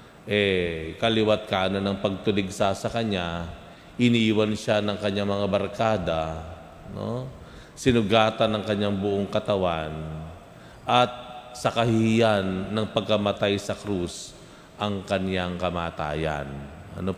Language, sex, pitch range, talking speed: Filipino, male, 90-110 Hz, 100 wpm